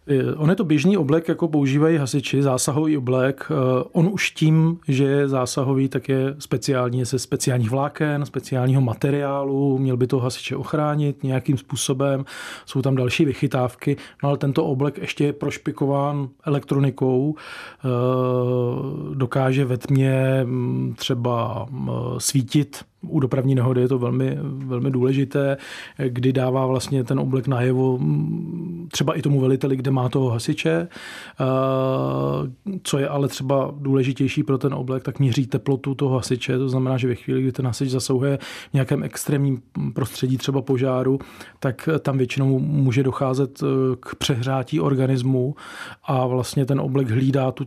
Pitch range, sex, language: 130-145 Hz, male, Czech